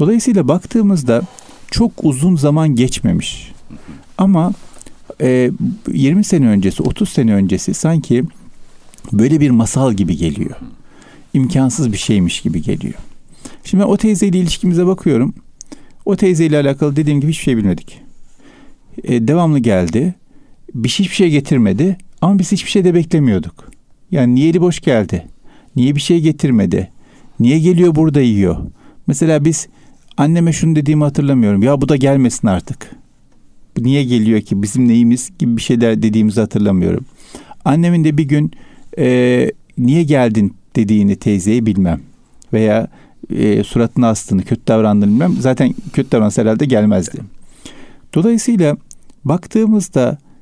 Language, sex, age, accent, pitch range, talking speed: Turkish, male, 50-69, native, 115-170 Hz, 135 wpm